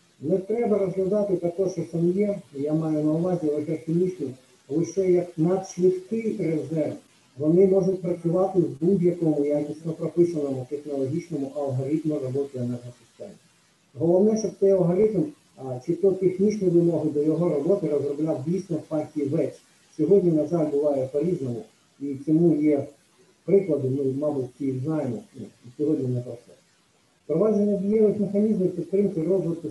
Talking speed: 135 wpm